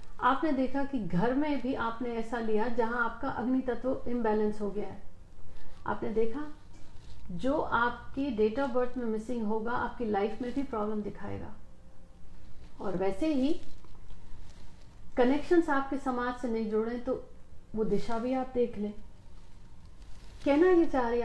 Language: Hindi